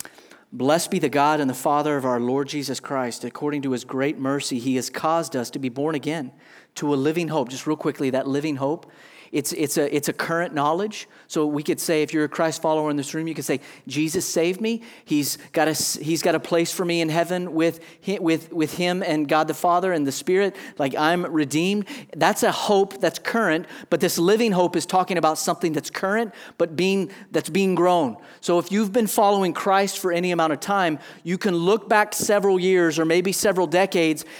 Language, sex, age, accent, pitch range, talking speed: English, male, 40-59, American, 155-205 Hz, 220 wpm